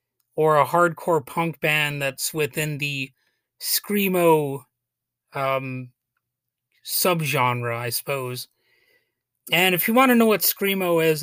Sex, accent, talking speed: male, American, 120 wpm